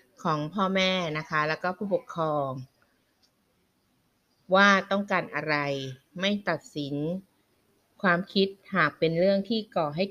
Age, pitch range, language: 20-39, 150-190 Hz, Thai